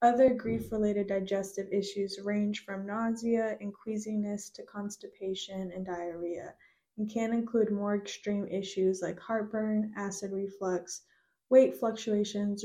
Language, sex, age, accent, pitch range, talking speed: English, female, 10-29, American, 190-215 Hz, 120 wpm